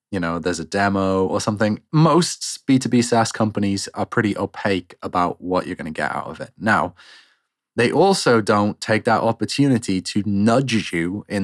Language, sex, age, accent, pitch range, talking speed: English, male, 20-39, British, 90-115 Hz, 180 wpm